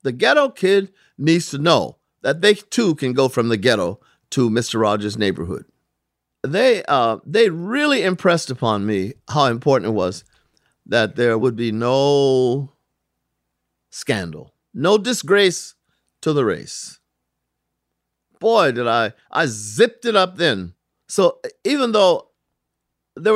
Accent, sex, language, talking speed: American, male, English, 135 wpm